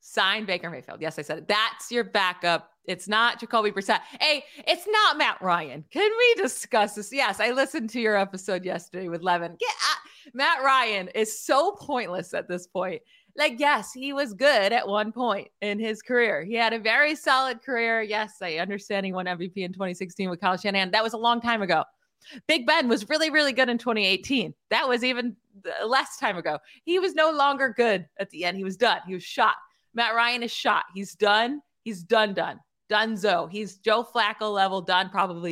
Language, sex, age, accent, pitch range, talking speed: English, female, 30-49, American, 185-245 Hz, 200 wpm